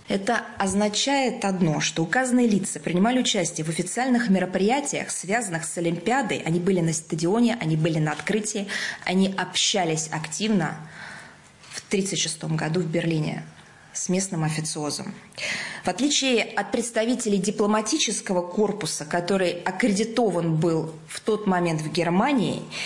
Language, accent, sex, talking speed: Russian, native, female, 125 wpm